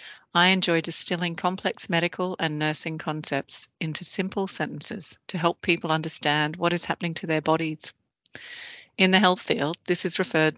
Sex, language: female, English